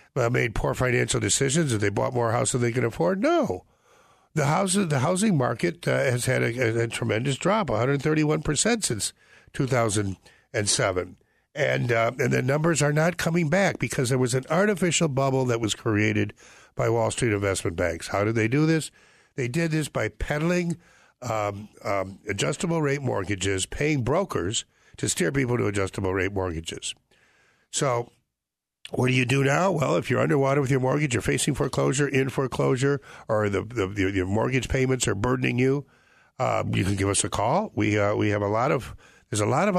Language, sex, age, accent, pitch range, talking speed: English, male, 60-79, American, 105-150 Hz, 195 wpm